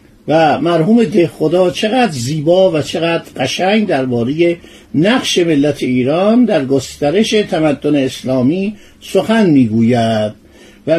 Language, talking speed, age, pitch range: Persian, 110 wpm, 50-69, 145-210 Hz